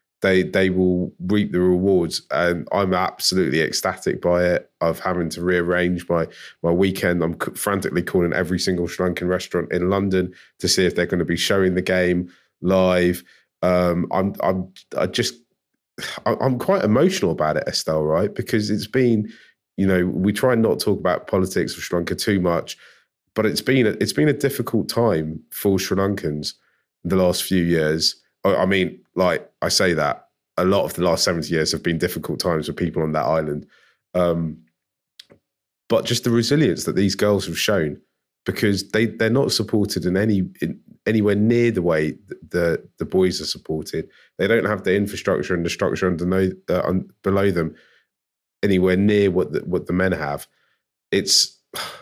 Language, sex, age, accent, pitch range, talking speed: English, male, 20-39, British, 90-105 Hz, 175 wpm